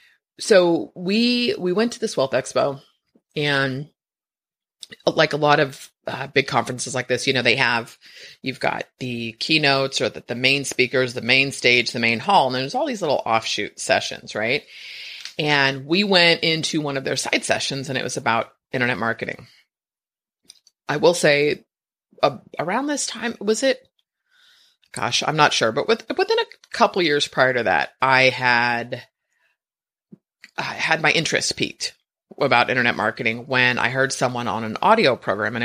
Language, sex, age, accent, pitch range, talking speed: English, female, 30-49, American, 125-175 Hz, 170 wpm